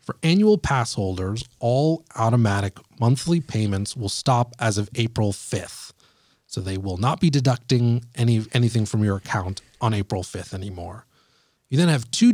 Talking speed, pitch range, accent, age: 160 wpm, 105-140 Hz, American, 30-49